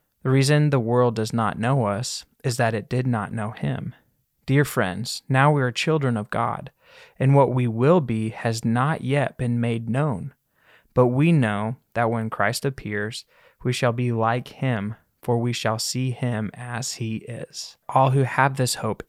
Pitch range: 115-140 Hz